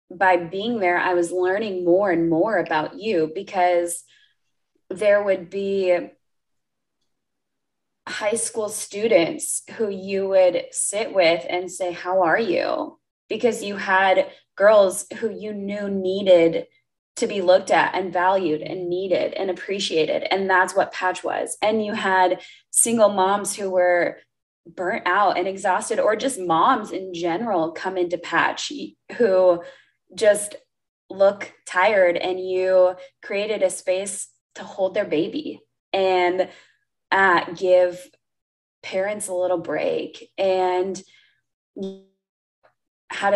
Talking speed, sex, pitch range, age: 125 wpm, female, 180-205 Hz, 20-39